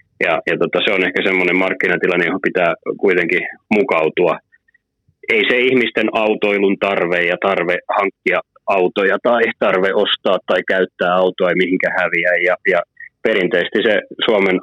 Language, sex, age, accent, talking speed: Finnish, male, 30-49, native, 145 wpm